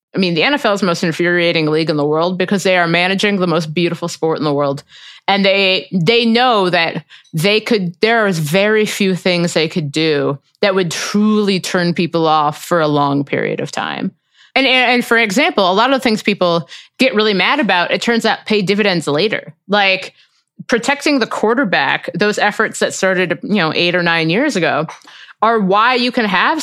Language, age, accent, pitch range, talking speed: English, 30-49, American, 170-230 Hz, 205 wpm